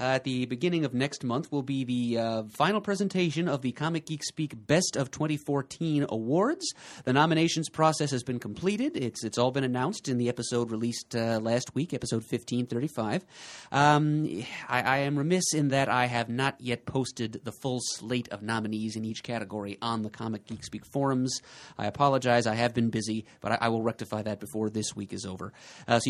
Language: English